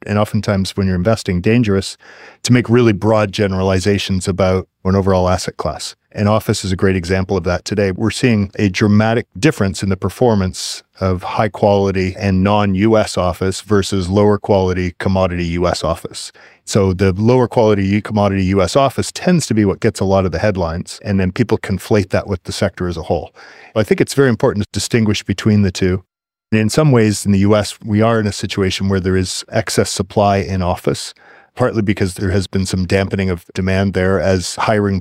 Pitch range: 95-110 Hz